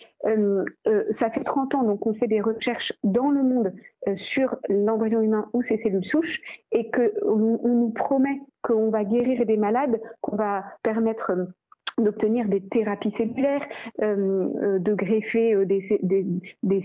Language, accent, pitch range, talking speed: French, French, 210-235 Hz, 160 wpm